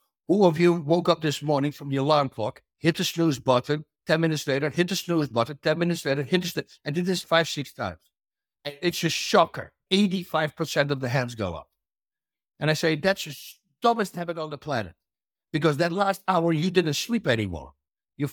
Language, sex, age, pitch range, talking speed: English, male, 60-79, 130-175 Hz, 210 wpm